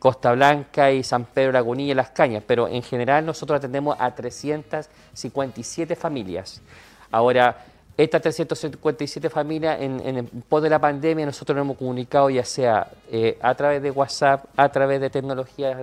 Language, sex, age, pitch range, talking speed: Spanish, male, 40-59, 125-145 Hz, 165 wpm